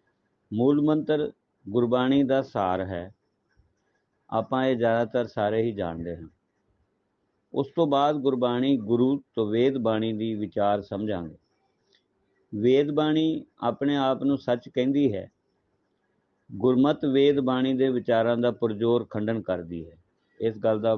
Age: 50-69